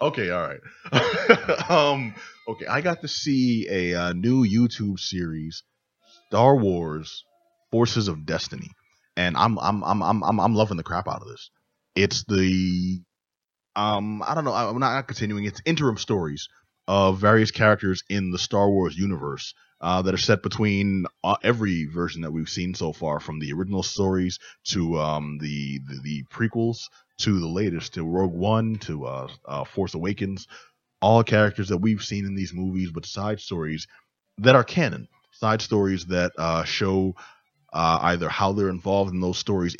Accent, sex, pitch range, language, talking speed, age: American, male, 85-110 Hz, English, 170 wpm, 30-49